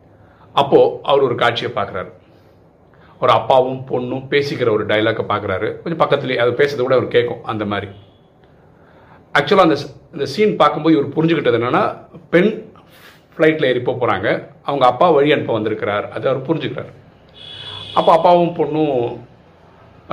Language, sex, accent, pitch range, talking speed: Tamil, male, native, 110-160 Hz, 130 wpm